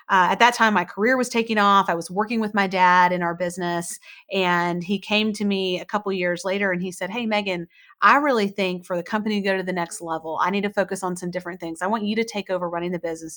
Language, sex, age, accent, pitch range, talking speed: English, female, 30-49, American, 175-220 Hz, 275 wpm